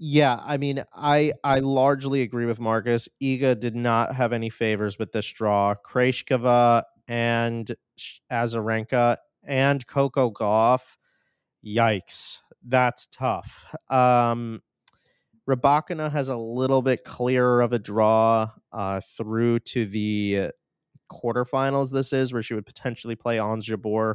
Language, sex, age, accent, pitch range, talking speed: English, male, 30-49, American, 110-130 Hz, 125 wpm